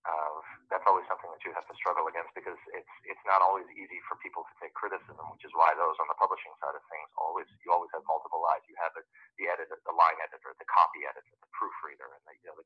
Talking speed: 250 wpm